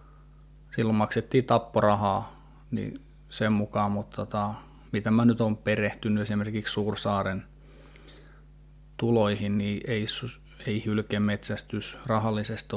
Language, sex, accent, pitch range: Finnish, male, native, 105-120 Hz